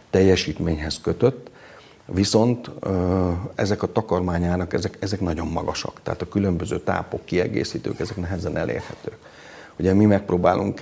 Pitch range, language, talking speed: 85-95 Hz, Hungarian, 115 wpm